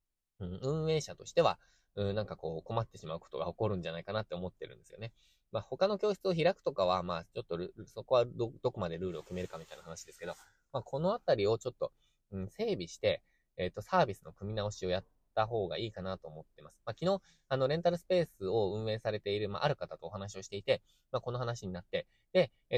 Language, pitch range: Japanese, 95-125 Hz